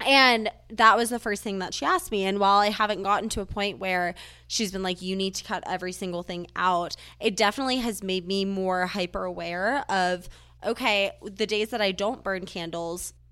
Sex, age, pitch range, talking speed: female, 20-39, 180-220 Hz, 210 wpm